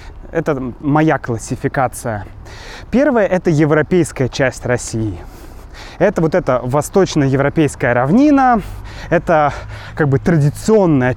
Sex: male